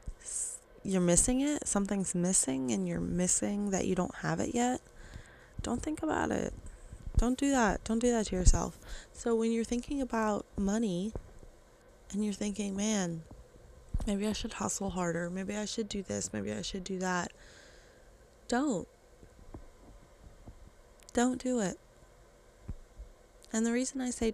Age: 20-39